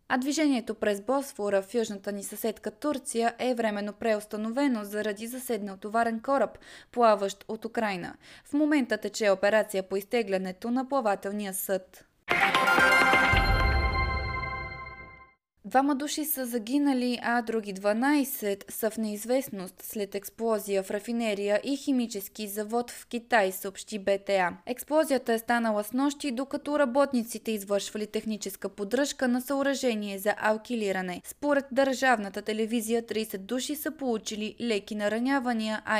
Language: Bulgarian